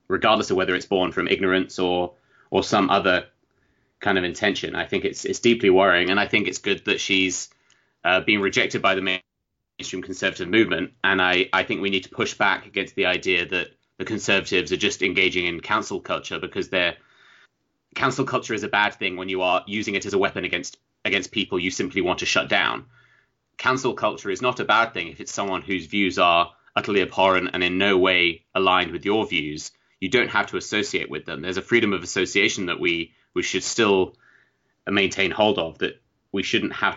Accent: British